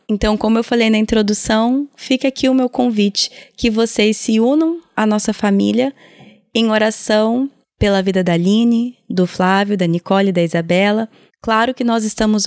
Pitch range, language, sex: 195-230 Hz, Portuguese, female